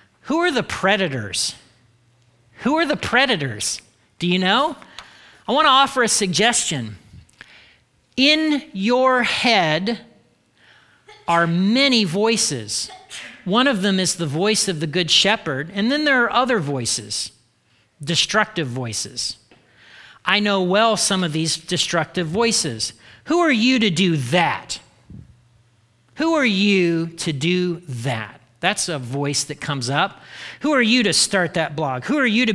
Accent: American